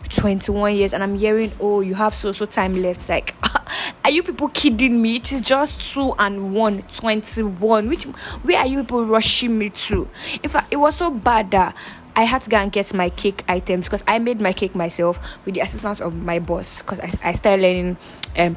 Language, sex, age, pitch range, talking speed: English, female, 10-29, 180-215 Hz, 215 wpm